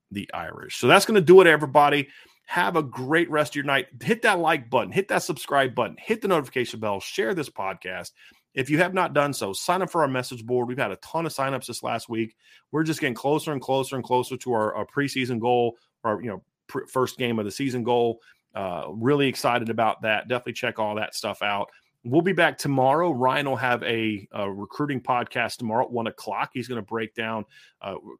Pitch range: 115-150 Hz